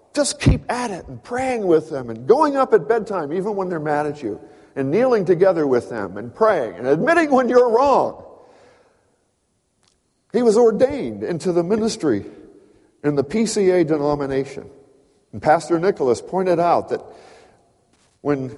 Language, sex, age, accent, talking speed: English, male, 50-69, American, 155 wpm